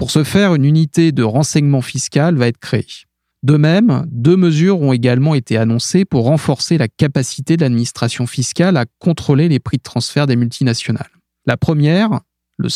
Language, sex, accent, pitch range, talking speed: French, male, French, 120-155 Hz, 175 wpm